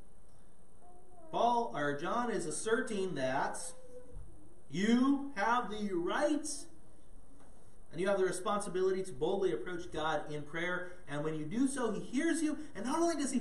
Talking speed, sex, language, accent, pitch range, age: 150 wpm, male, English, American, 150-225 Hz, 30-49